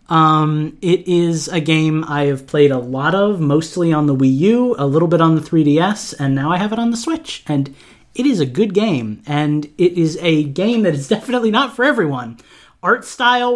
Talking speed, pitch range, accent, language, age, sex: 215 wpm, 140-180 Hz, American, English, 30-49, male